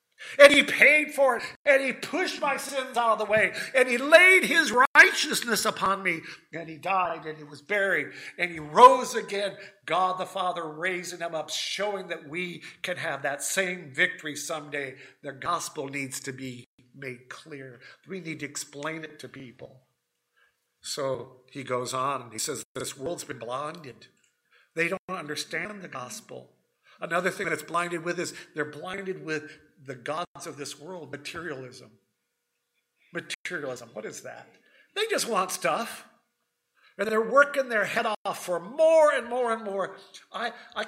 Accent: American